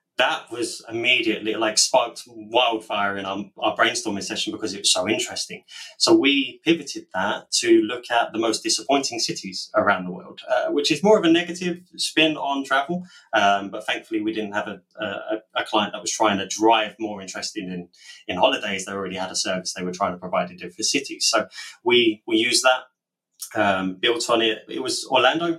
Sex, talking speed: male, 200 wpm